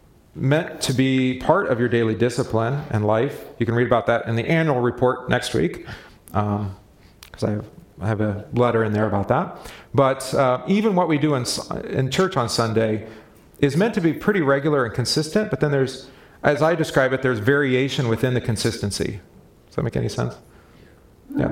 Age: 40-59